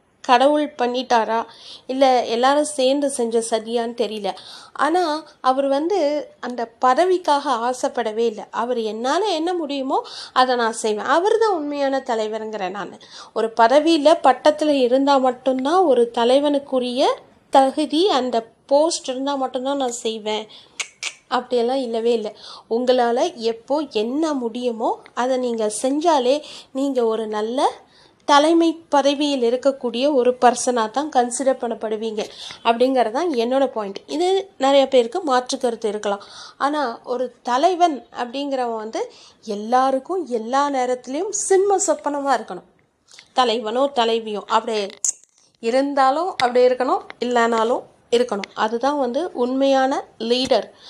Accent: native